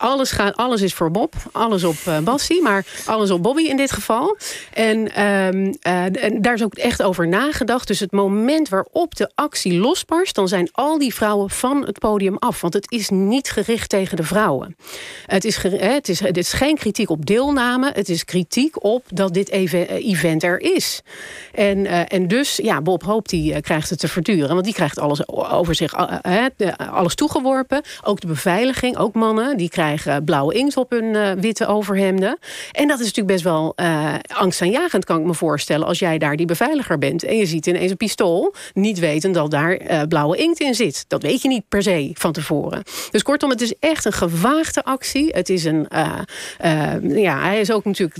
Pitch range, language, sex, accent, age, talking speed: 175-235 Hz, Dutch, female, Dutch, 40-59, 195 wpm